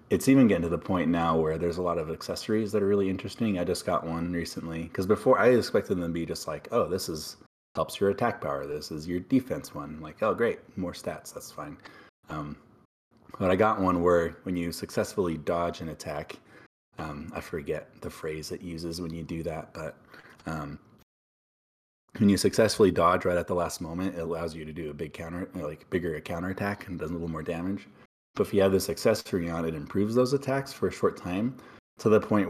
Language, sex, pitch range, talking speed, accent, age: English, male, 80-95 Hz, 220 wpm, American, 30-49